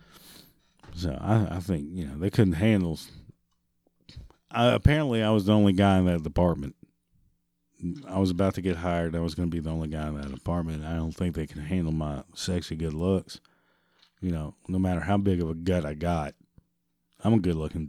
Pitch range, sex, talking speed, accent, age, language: 80-110 Hz, male, 200 wpm, American, 40-59, English